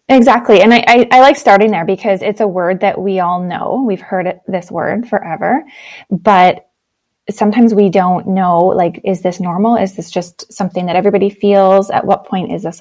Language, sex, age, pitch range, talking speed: English, female, 20-39, 185-225 Hz, 195 wpm